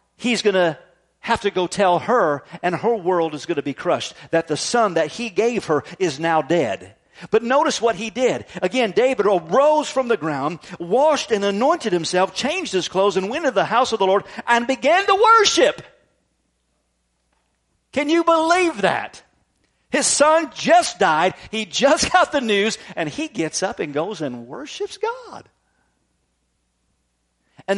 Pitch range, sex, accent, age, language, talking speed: 160-235 Hz, male, American, 50-69, English, 170 wpm